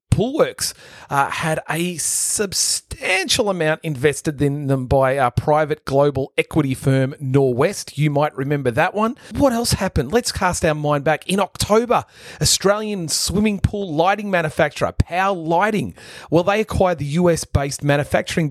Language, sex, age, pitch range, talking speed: English, male, 30-49, 140-180 Hz, 145 wpm